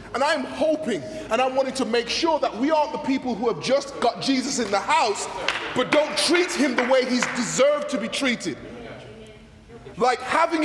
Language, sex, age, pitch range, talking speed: English, male, 20-39, 215-275 Hz, 195 wpm